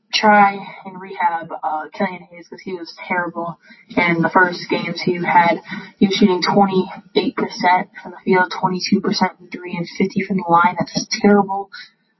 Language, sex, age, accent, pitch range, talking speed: English, female, 20-39, American, 175-210 Hz, 165 wpm